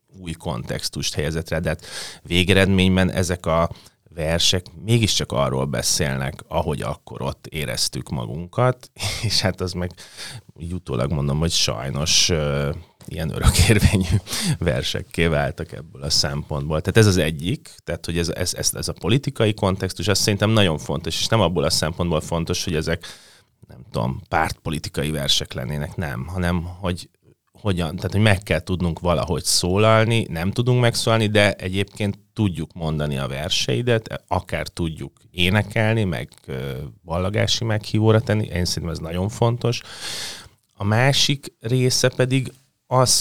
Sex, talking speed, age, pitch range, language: male, 135 wpm, 30-49, 85-110 Hz, Hungarian